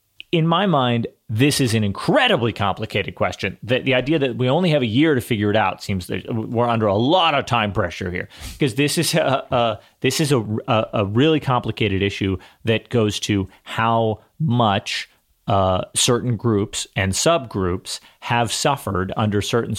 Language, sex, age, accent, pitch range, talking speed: English, male, 30-49, American, 95-125 Hz, 175 wpm